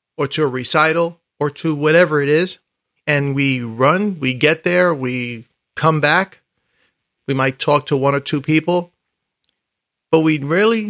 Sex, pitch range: male, 135-165 Hz